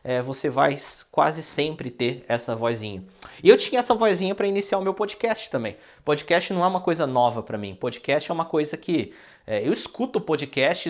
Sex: male